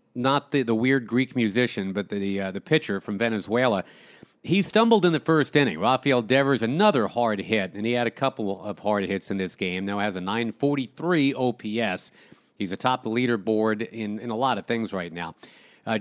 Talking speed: 200 wpm